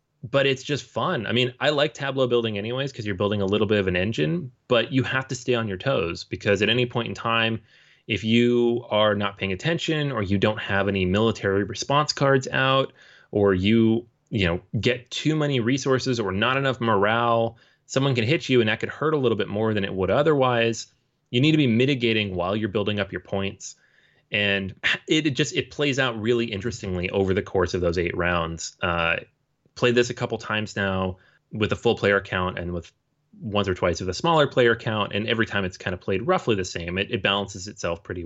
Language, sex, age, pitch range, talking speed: English, male, 30-49, 100-130 Hz, 220 wpm